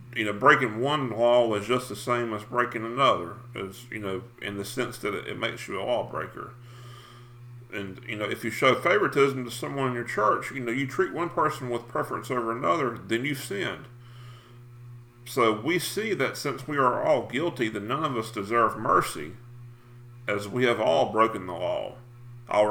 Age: 40-59